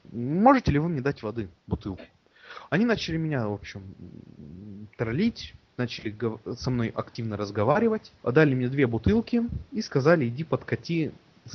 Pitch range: 105-140 Hz